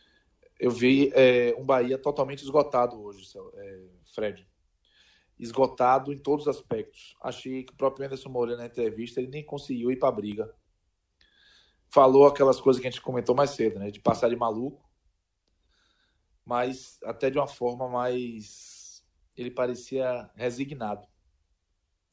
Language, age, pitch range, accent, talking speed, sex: Portuguese, 20-39, 100-130 Hz, Brazilian, 145 wpm, male